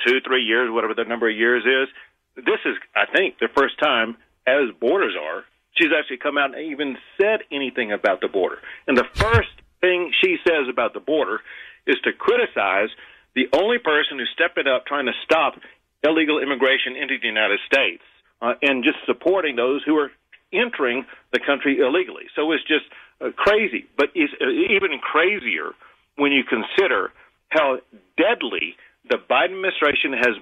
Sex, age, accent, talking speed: male, 50-69, American, 170 wpm